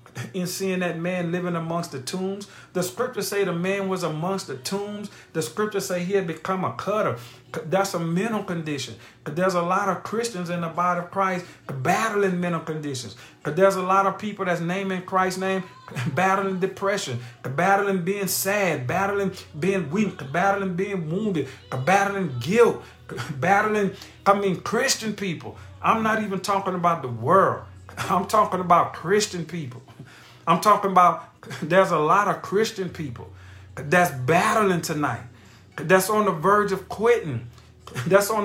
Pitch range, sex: 145-195 Hz, male